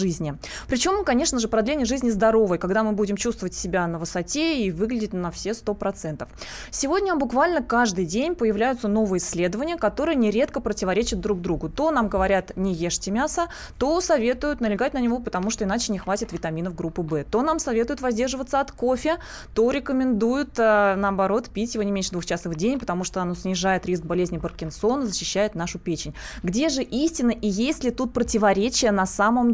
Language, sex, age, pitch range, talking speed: Russian, female, 20-39, 195-255 Hz, 175 wpm